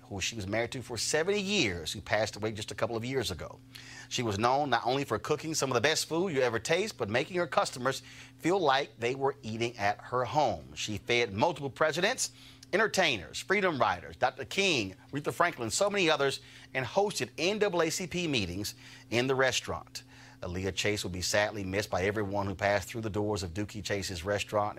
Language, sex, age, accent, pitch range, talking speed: English, male, 30-49, American, 100-130 Hz, 200 wpm